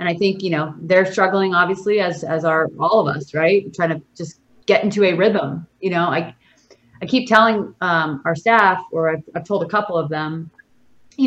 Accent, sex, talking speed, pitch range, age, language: American, female, 220 wpm, 165-210 Hz, 30-49, English